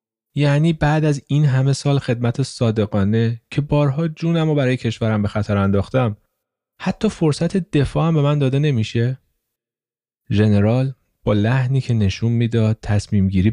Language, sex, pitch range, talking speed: Persian, male, 100-150 Hz, 140 wpm